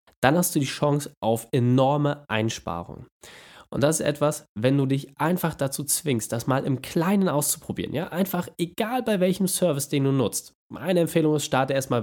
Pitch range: 115-155 Hz